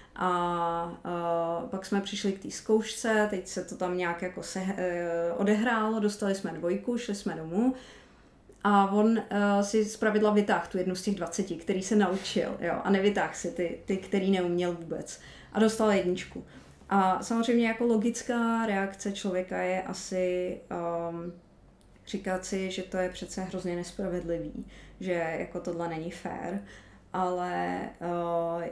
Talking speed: 155 wpm